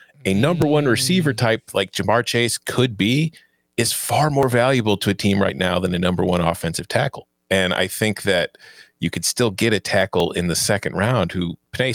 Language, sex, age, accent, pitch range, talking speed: English, male, 40-59, American, 95-135 Hz, 205 wpm